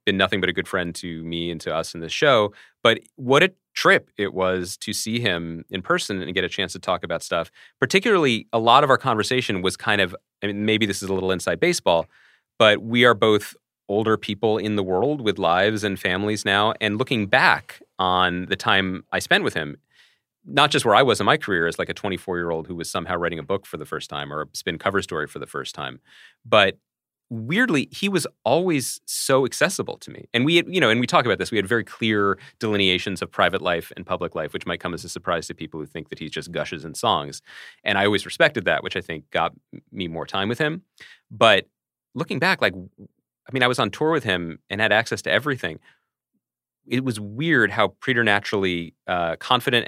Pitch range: 90-115 Hz